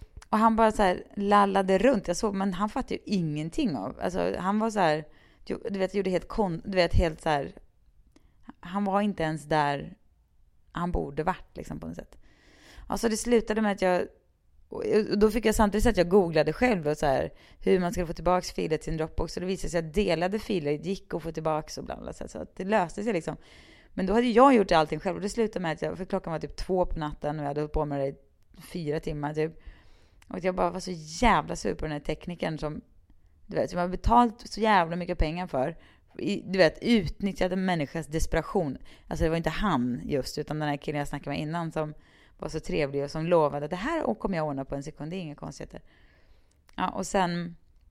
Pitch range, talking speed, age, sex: 150-210 Hz, 230 wpm, 30-49, female